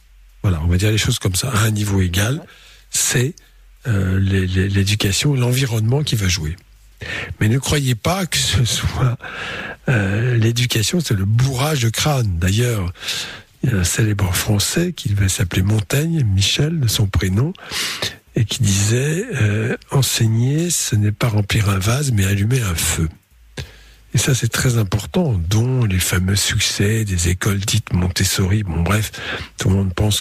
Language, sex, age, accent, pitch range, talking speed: French, male, 60-79, French, 95-125 Hz, 160 wpm